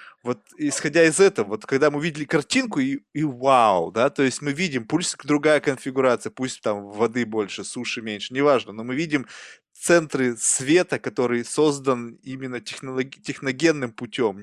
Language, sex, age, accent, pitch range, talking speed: Russian, male, 20-39, native, 120-150 Hz, 155 wpm